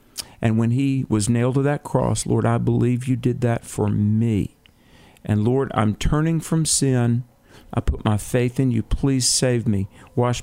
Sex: male